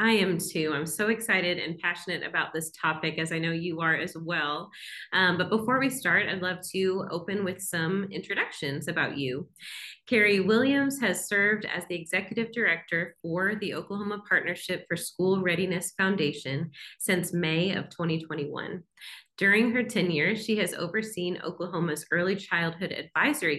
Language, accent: English, American